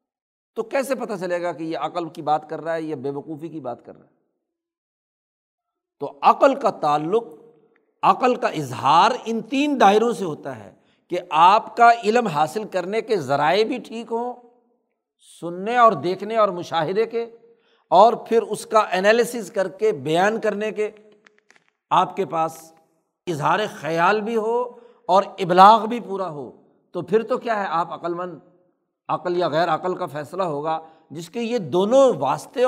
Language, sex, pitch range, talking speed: Urdu, male, 170-230 Hz, 170 wpm